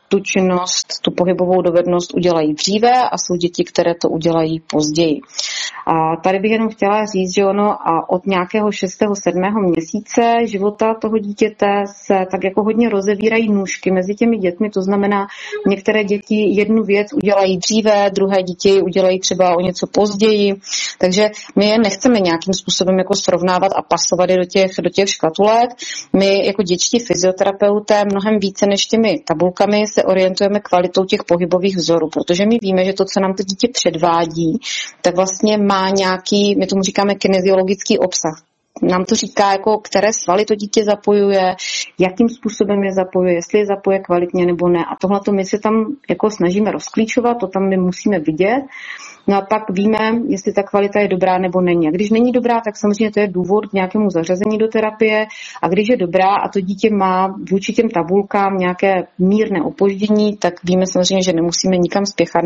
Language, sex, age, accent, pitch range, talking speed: Czech, female, 30-49, native, 180-210 Hz, 175 wpm